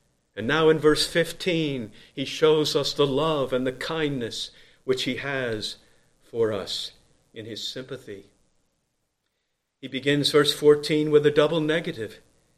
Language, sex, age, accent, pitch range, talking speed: English, male, 50-69, American, 145-180 Hz, 140 wpm